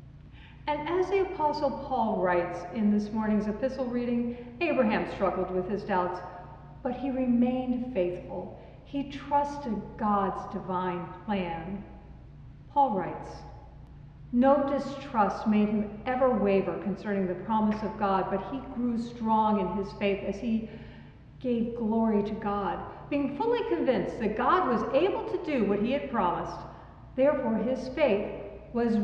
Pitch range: 200-275 Hz